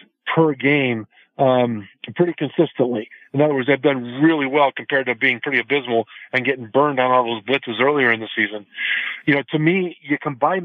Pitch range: 130-155 Hz